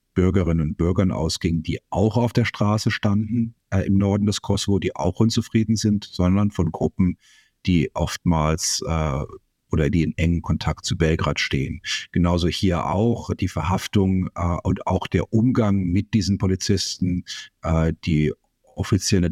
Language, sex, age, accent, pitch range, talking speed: German, male, 50-69, German, 85-105 Hz, 150 wpm